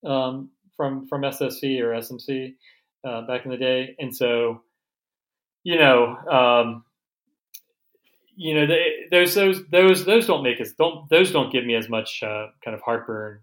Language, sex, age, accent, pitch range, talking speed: English, male, 30-49, American, 110-140 Hz, 165 wpm